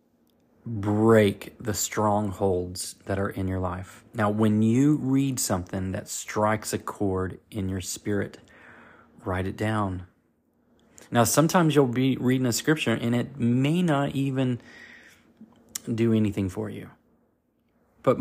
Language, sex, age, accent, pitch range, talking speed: English, male, 30-49, American, 95-115 Hz, 130 wpm